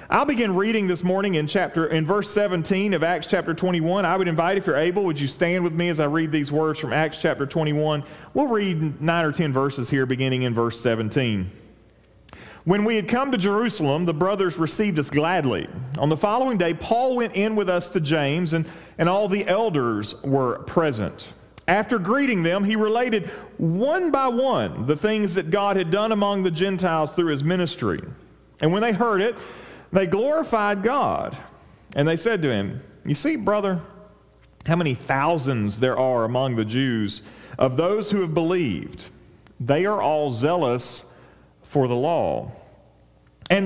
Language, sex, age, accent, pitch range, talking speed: English, male, 40-59, American, 150-210 Hz, 180 wpm